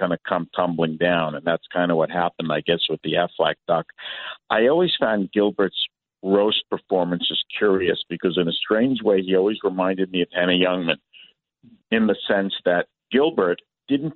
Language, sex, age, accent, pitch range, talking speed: English, male, 50-69, American, 110-150 Hz, 185 wpm